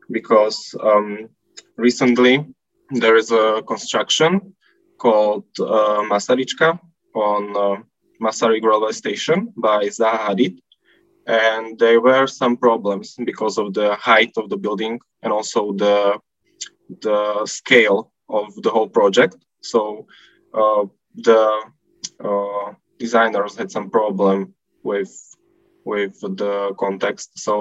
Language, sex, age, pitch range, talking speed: English, male, 20-39, 105-115 Hz, 115 wpm